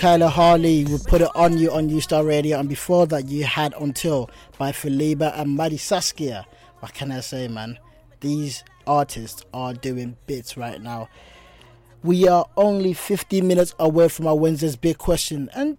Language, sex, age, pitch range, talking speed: English, male, 20-39, 120-170 Hz, 175 wpm